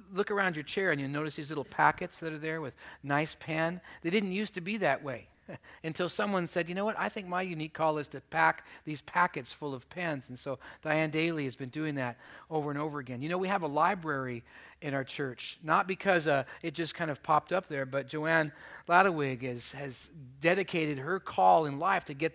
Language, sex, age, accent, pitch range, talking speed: English, male, 40-59, American, 140-175 Hz, 225 wpm